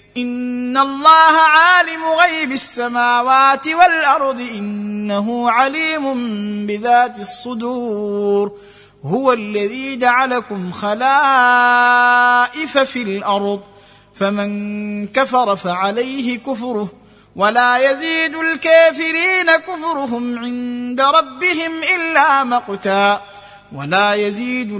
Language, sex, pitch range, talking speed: Arabic, male, 205-270 Hz, 75 wpm